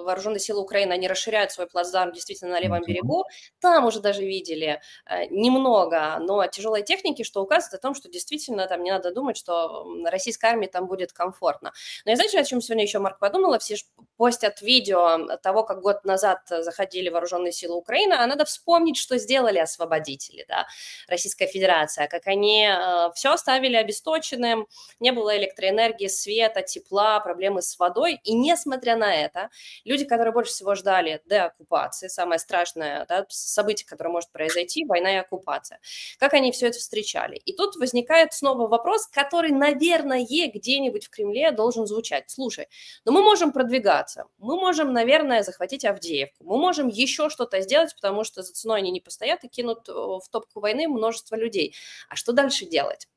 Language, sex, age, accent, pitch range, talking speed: Russian, female, 20-39, native, 185-260 Hz, 170 wpm